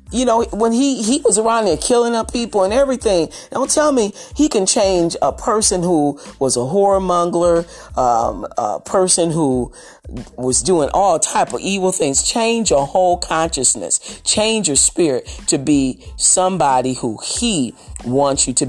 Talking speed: 165 wpm